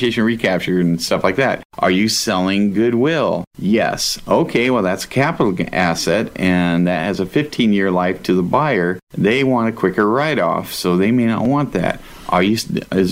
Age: 50-69